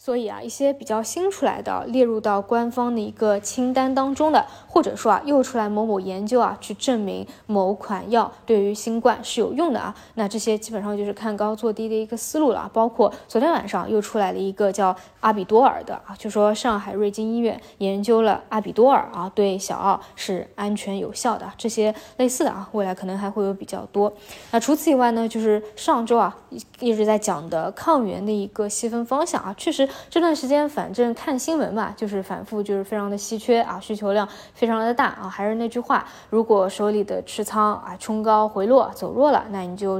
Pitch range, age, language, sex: 205-240 Hz, 20-39, Chinese, female